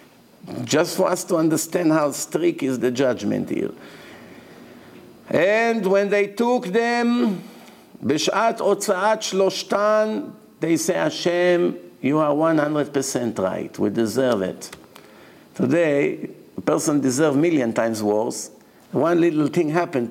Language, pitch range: English, 135-190 Hz